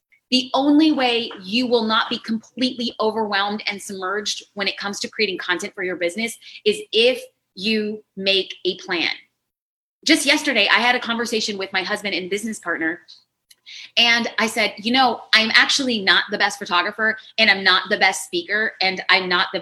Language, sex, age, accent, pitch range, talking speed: English, female, 30-49, American, 205-260 Hz, 180 wpm